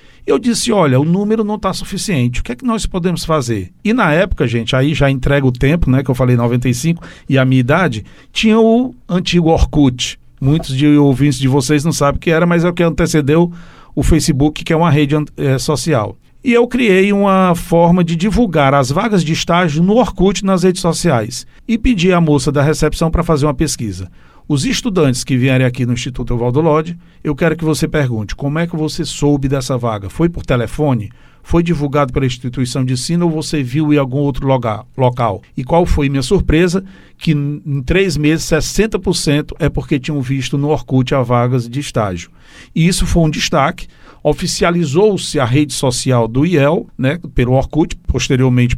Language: Portuguese